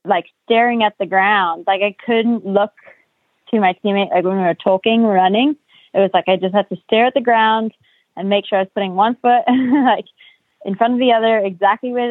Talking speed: 225 wpm